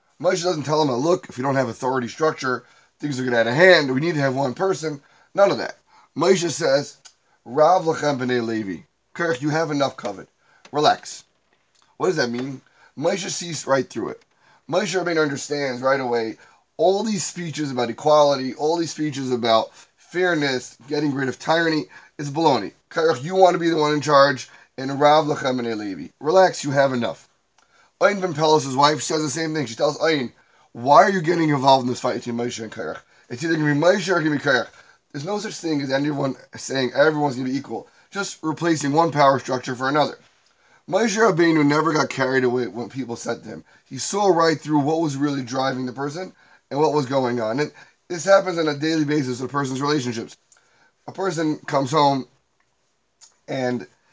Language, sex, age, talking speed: English, male, 30-49, 200 wpm